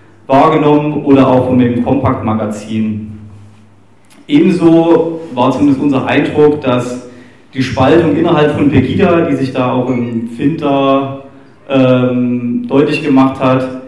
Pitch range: 130-155 Hz